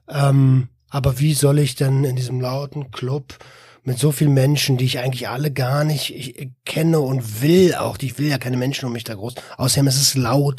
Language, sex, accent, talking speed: German, male, German, 225 wpm